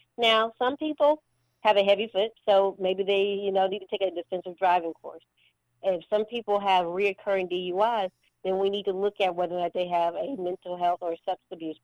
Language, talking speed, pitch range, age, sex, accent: English, 220 wpm, 170-190 Hz, 40-59, female, American